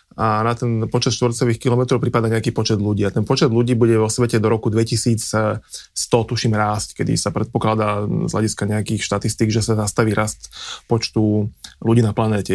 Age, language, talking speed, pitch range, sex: 20-39, Slovak, 175 wpm, 105-120 Hz, male